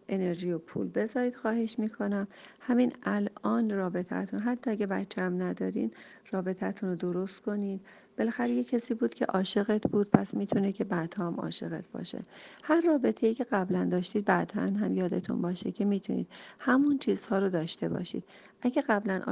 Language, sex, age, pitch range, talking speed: Persian, female, 40-59, 180-230 Hz, 160 wpm